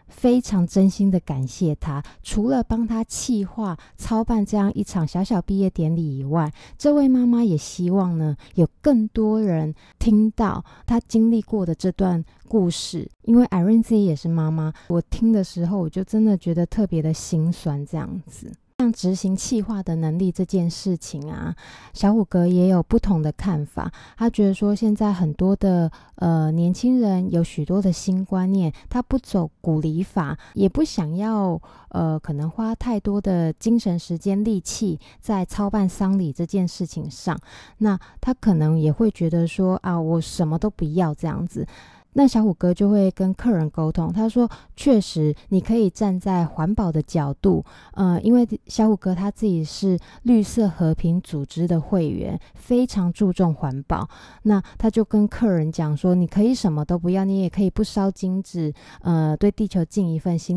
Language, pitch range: Chinese, 165-215 Hz